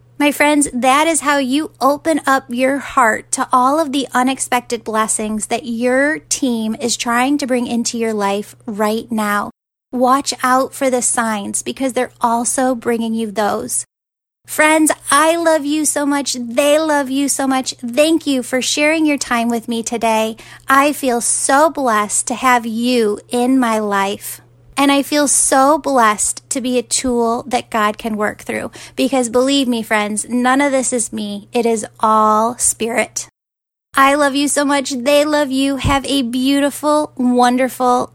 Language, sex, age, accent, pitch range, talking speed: English, female, 10-29, American, 225-280 Hz, 170 wpm